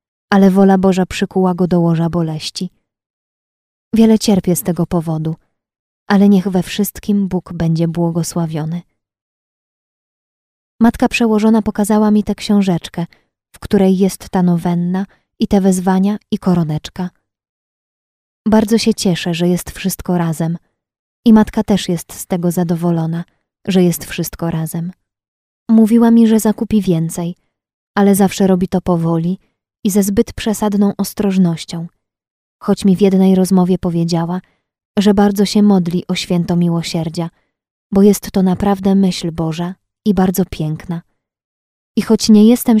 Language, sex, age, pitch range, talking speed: Polish, female, 20-39, 170-205 Hz, 135 wpm